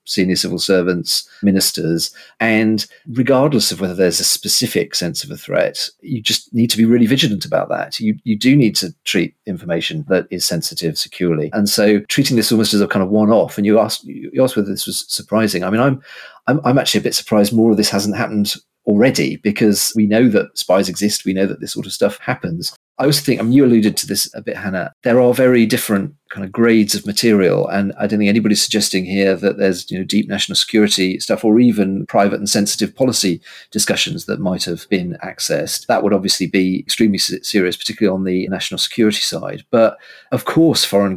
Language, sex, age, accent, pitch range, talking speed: English, male, 40-59, British, 100-120 Hz, 215 wpm